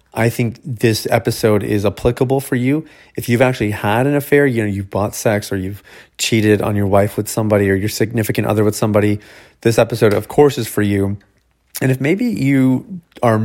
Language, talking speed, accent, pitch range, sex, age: English, 200 wpm, American, 105-120 Hz, male, 30-49